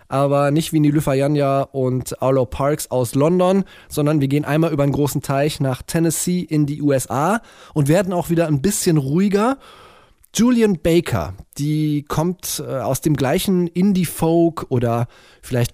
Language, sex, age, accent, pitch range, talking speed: German, male, 20-39, German, 130-175 Hz, 150 wpm